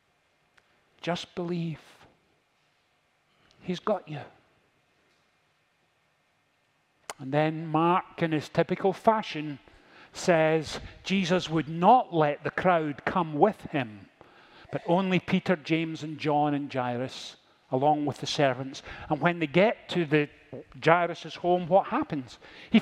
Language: English